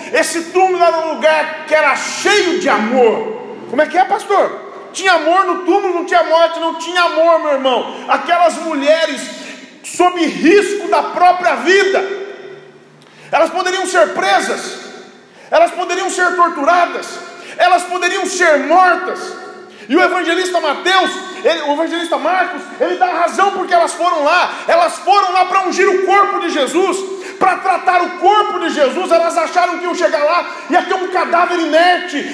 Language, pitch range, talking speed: Portuguese, 335-375 Hz, 160 wpm